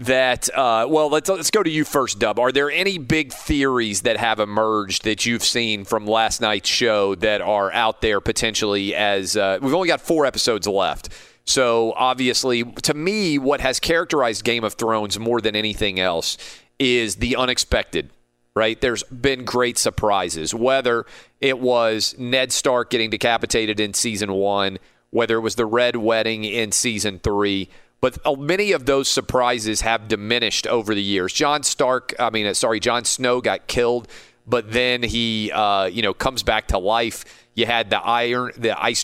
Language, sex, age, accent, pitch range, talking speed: English, male, 40-59, American, 105-125 Hz, 175 wpm